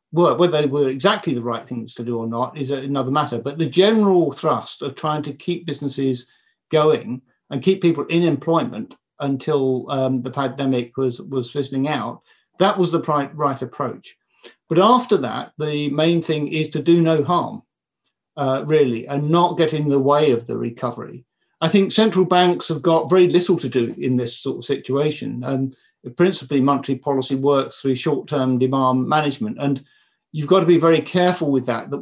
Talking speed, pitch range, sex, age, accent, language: 185 wpm, 130-160 Hz, male, 50-69, British, English